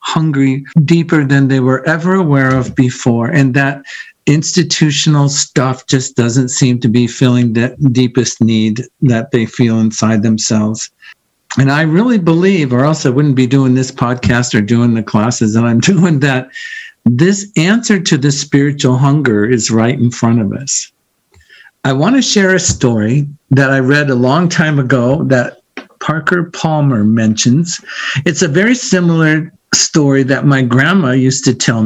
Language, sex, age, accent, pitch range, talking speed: English, male, 50-69, American, 120-155 Hz, 165 wpm